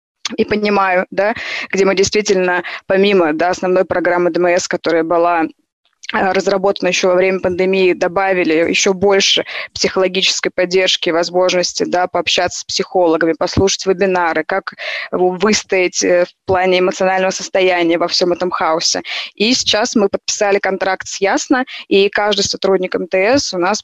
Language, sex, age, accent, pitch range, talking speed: Russian, female, 20-39, native, 175-200 Hz, 135 wpm